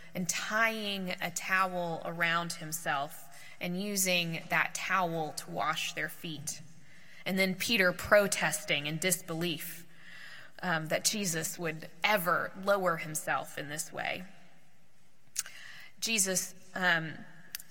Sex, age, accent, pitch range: female, 20-39, American, 165-190 Hz